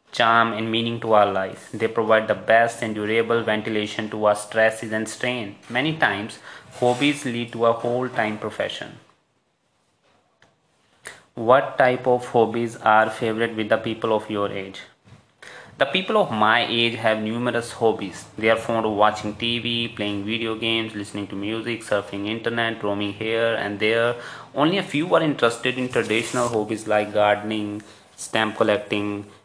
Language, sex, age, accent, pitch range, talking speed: Hindi, male, 20-39, native, 105-120 Hz, 155 wpm